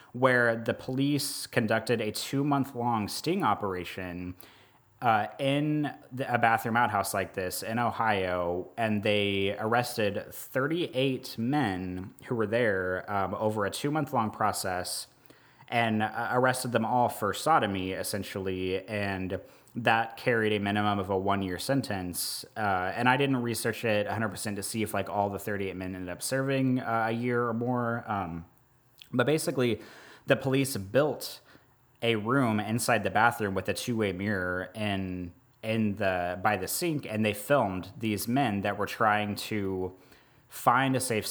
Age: 30-49